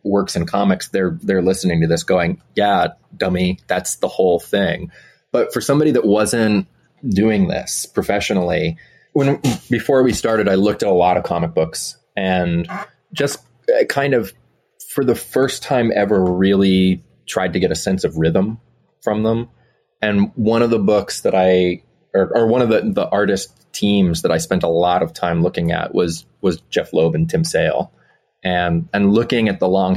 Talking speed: 180 wpm